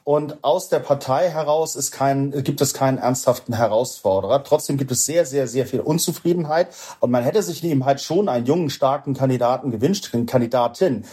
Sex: male